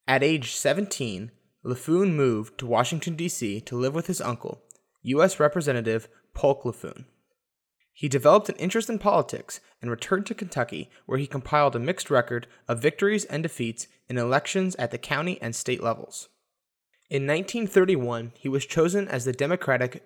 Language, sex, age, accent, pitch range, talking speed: English, male, 20-39, American, 120-160 Hz, 160 wpm